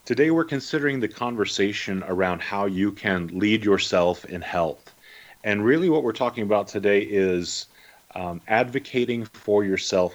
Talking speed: 150 wpm